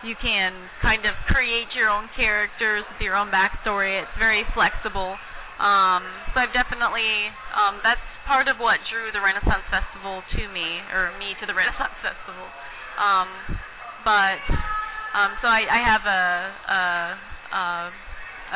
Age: 30-49